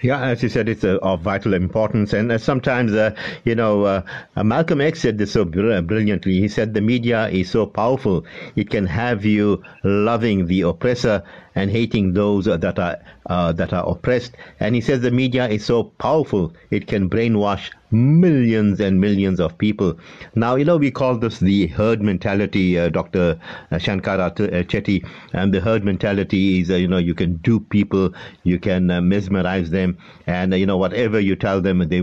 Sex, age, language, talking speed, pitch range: male, 50-69, English, 185 wpm, 95-110 Hz